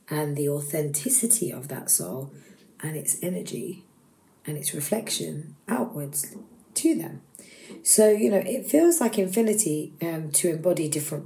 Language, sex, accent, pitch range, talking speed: English, female, British, 145-185 Hz, 140 wpm